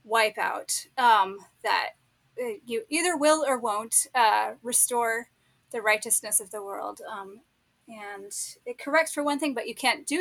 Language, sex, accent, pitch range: English, female, American, 215-270 Hz